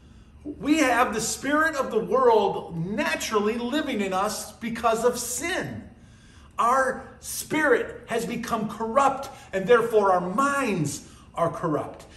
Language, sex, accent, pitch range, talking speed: English, male, American, 165-235 Hz, 125 wpm